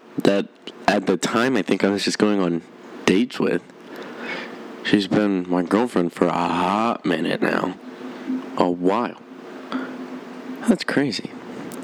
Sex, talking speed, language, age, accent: male, 130 wpm, English, 20-39, American